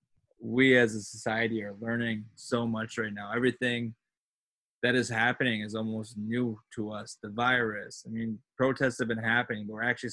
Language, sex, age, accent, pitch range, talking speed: English, male, 20-39, American, 110-125 Hz, 180 wpm